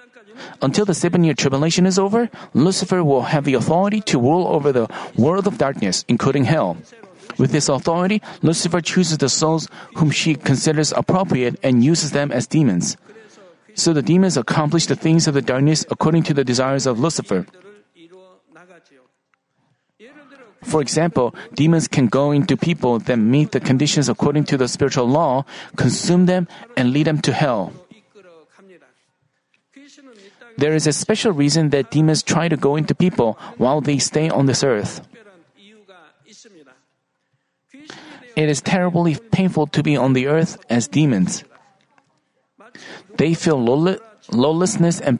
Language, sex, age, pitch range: Korean, male, 40-59, 140-185 Hz